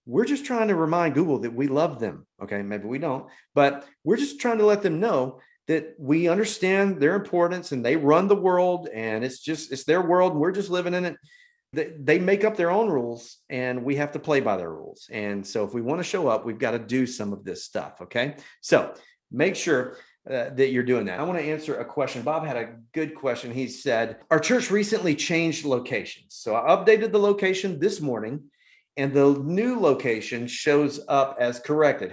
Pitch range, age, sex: 125-170 Hz, 40-59, male